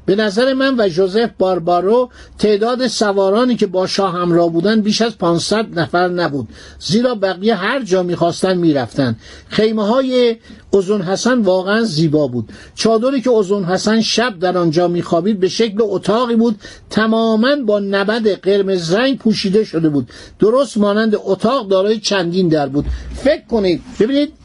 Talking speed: 145 wpm